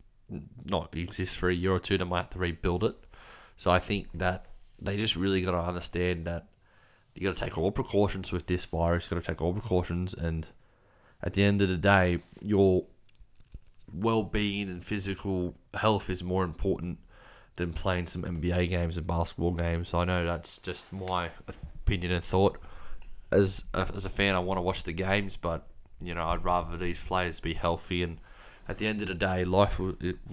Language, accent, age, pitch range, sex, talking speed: English, Australian, 20-39, 85-95 Hz, male, 200 wpm